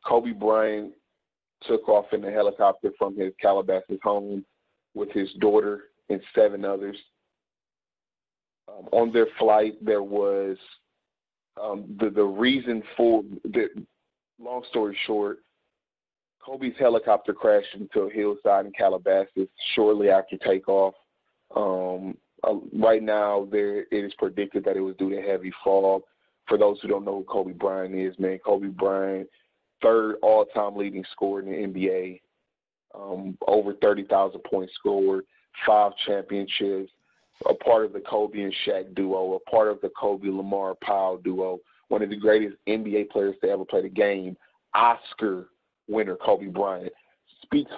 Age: 30-49